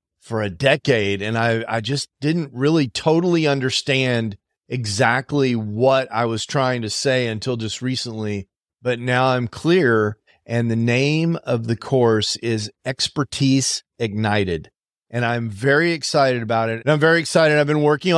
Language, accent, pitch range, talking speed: English, American, 115-140 Hz, 155 wpm